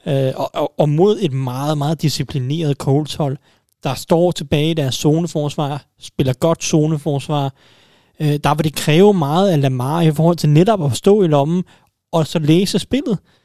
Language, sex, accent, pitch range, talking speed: Danish, male, native, 140-165 Hz, 170 wpm